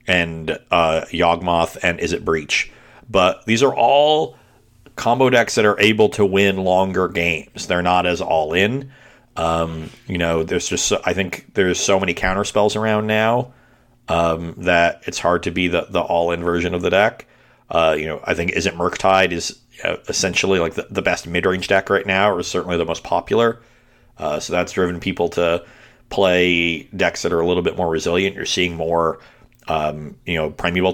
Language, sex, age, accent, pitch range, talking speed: English, male, 40-59, American, 85-100 Hz, 200 wpm